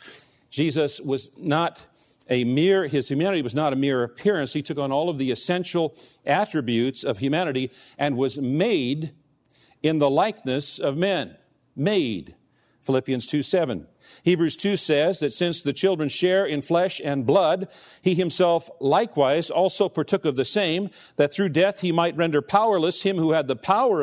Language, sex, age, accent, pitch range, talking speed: English, male, 50-69, American, 135-185 Hz, 160 wpm